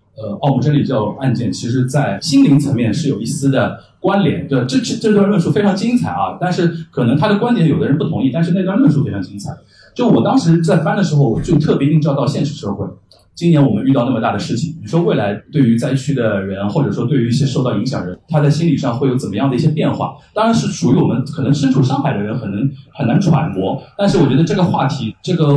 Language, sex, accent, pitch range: Chinese, male, native, 130-175 Hz